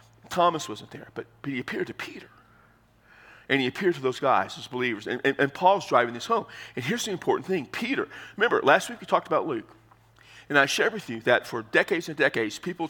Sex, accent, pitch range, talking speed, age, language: male, American, 120-160 Hz, 225 wpm, 40-59, English